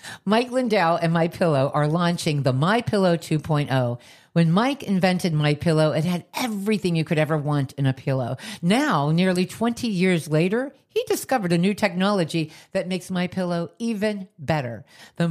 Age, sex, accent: 50-69, female, American